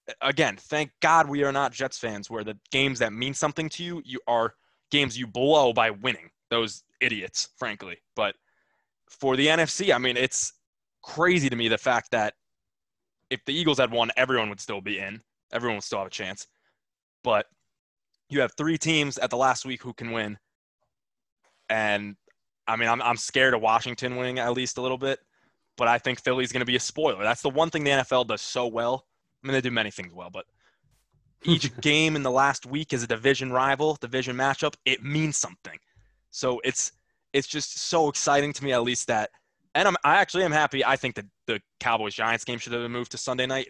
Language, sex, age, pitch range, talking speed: English, male, 20-39, 120-140 Hz, 210 wpm